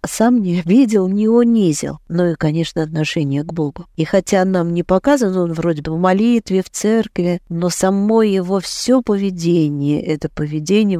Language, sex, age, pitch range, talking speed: Russian, female, 50-69, 155-210 Hz, 170 wpm